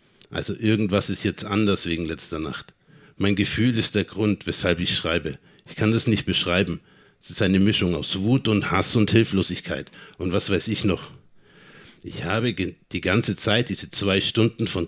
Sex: male